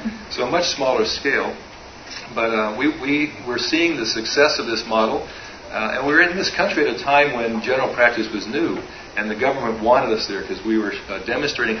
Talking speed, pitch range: 215 wpm, 105-120 Hz